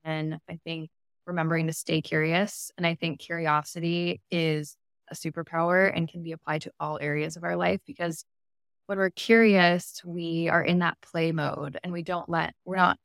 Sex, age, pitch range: female, 20-39, 160-180 Hz